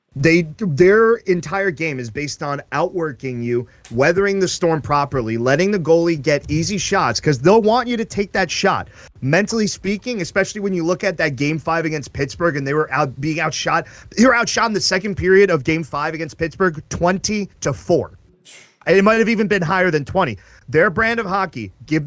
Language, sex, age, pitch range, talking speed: English, male, 30-49, 130-175 Hz, 200 wpm